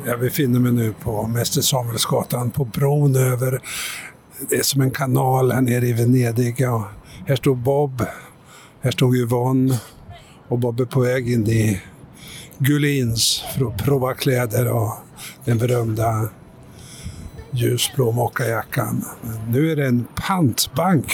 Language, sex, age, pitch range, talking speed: Swedish, male, 60-79, 120-145 Hz, 135 wpm